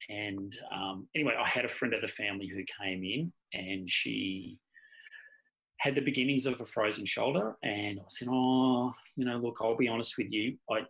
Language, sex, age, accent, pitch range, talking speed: English, male, 30-49, Australian, 95-135 Hz, 195 wpm